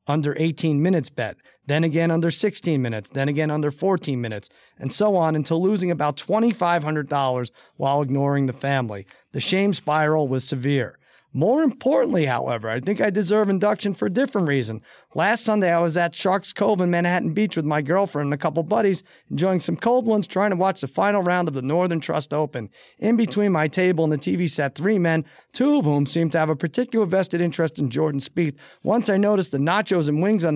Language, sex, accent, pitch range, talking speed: English, male, American, 145-185 Hz, 205 wpm